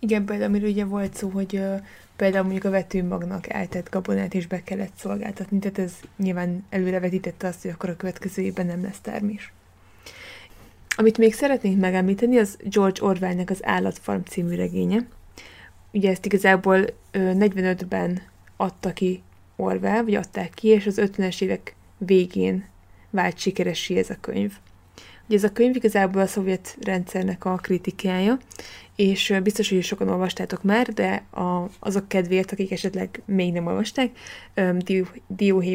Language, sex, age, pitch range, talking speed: Hungarian, female, 20-39, 180-205 Hz, 150 wpm